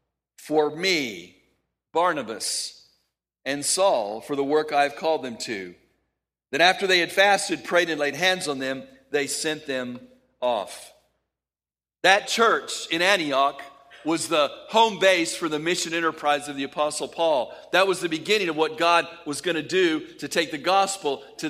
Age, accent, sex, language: 50-69, American, male, English